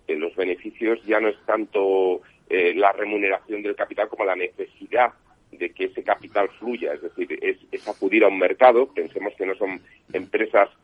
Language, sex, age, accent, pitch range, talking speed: Spanish, male, 40-59, Spanish, 345-435 Hz, 185 wpm